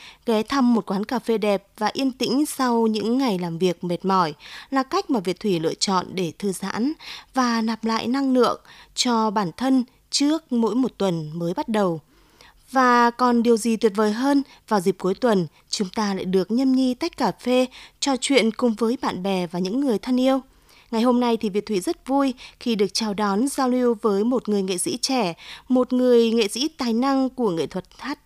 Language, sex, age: Vietnamese, female, 20-39